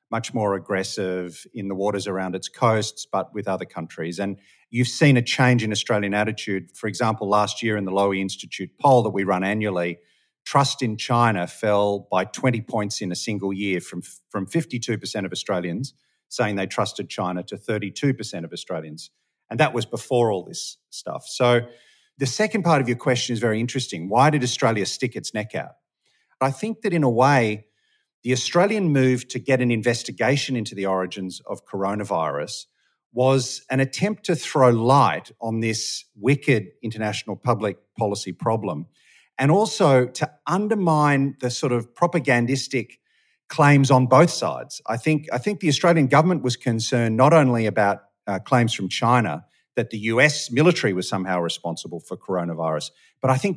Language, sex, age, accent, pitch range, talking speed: English, male, 40-59, Australian, 100-130 Hz, 170 wpm